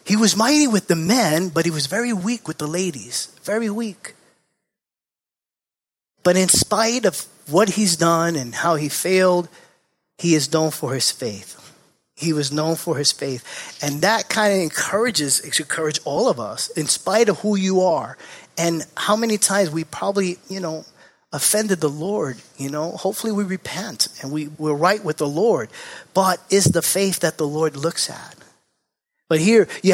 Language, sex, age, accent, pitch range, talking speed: English, male, 30-49, American, 150-190 Hz, 180 wpm